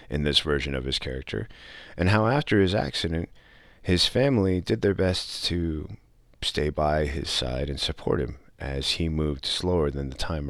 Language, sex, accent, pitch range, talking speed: English, male, American, 75-90 Hz, 175 wpm